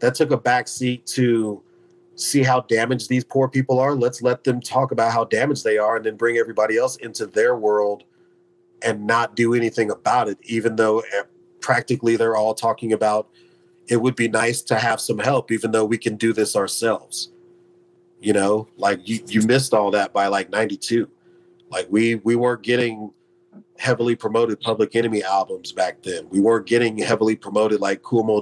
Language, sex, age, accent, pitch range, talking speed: English, male, 40-59, American, 110-175 Hz, 185 wpm